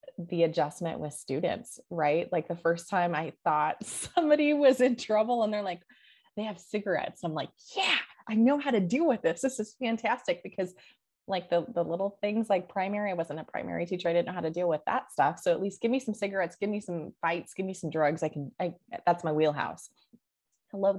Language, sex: English, female